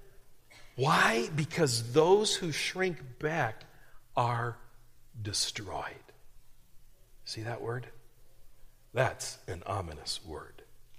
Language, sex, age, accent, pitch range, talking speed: English, male, 40-59, American, 125-180 Hz, 80 wpm